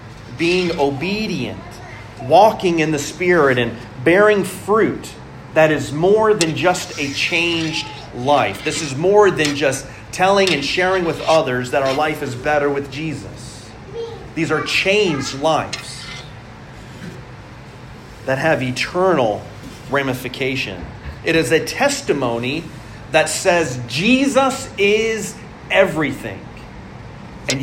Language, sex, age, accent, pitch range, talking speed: English, male, 30-49, American, 125-170 Hz, 115 wpm